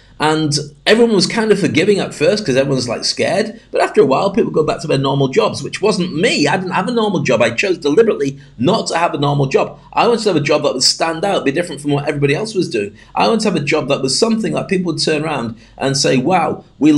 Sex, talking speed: male, 270 wpm